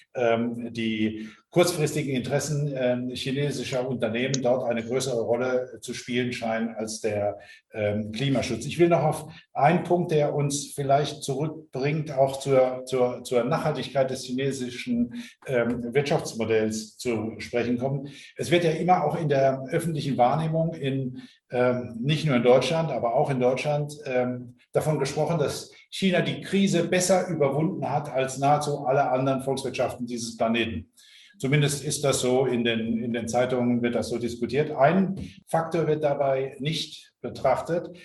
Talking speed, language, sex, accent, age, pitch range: 140 wpm, English, male, German, 50-69, 125-155 Hz